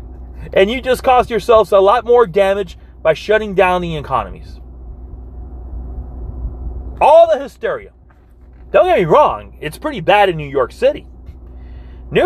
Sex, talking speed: male, 140 wpm